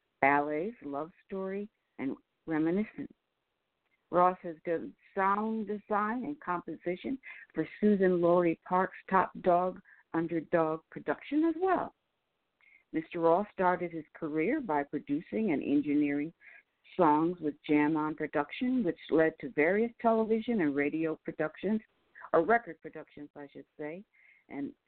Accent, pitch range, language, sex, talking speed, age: American, 155-205 Hz, English, female, 120 wpm, 60-79